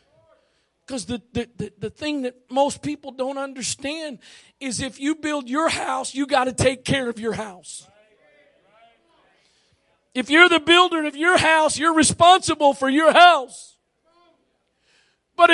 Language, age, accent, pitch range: English, 50-69, American, 225-330 Hz